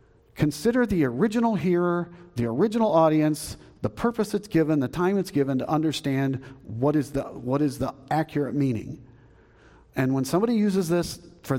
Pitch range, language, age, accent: 140-175 Hz, English, 50-69, American